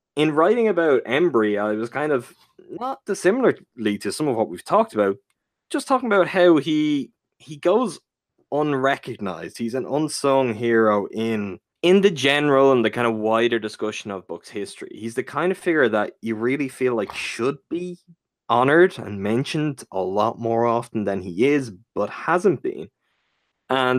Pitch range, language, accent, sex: 110-140 Hz, English, Irish, male